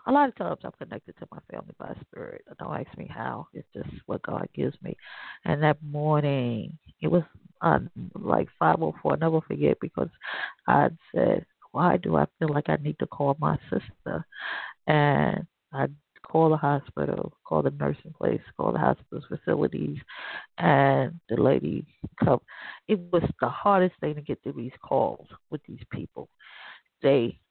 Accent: American